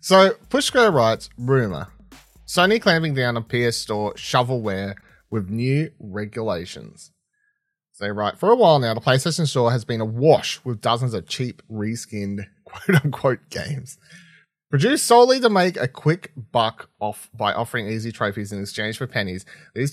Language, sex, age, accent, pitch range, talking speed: English, male, 30-49, Australian, 110-155 Hz, 160 wpm